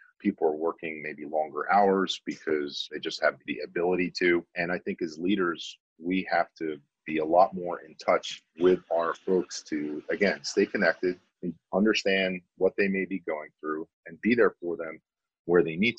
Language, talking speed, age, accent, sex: English, 190 wpm, 40-59, American, male